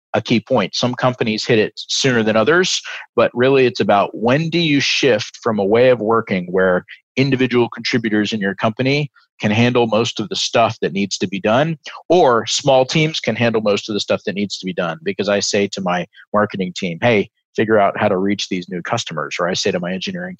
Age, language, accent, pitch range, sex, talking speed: 40-59, English, American, 100-125 Hz, male, 225 wpm